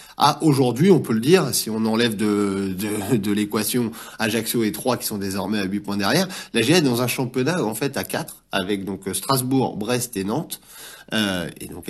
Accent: French